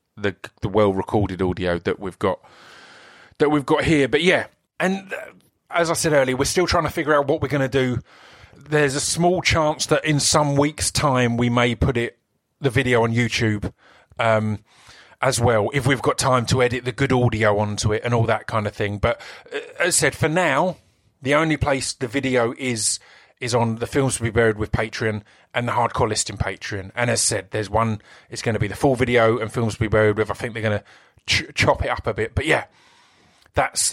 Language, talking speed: English, 225 wpm